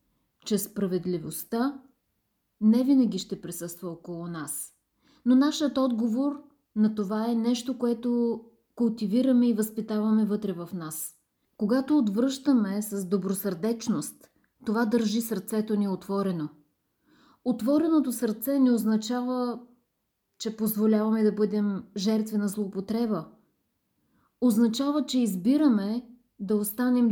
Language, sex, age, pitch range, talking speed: Bulgarian, female, 30-49, 205-250 Hz, 105 wpm